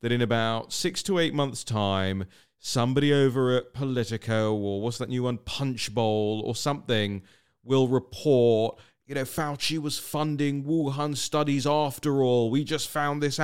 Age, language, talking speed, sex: 30-49, English, 155 wpm, male